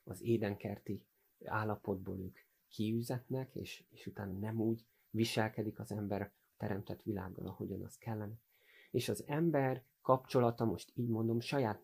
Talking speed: 135 wpm